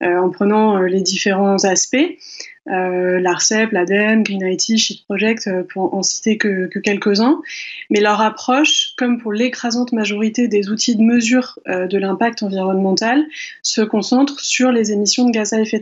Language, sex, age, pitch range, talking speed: French, female, 20-39, 200-240 Hz, 170 wpm